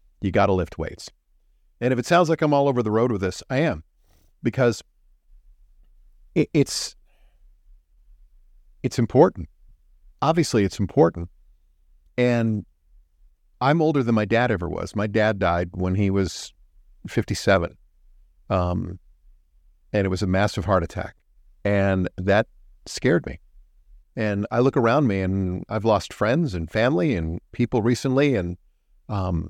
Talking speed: 140 wpm